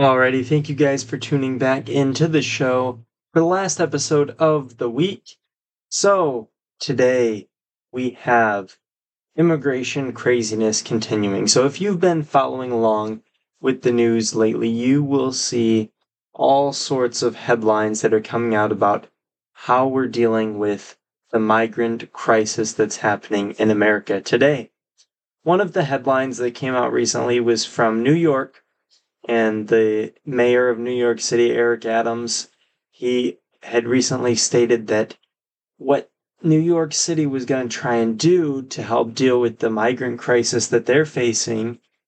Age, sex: 20-39, male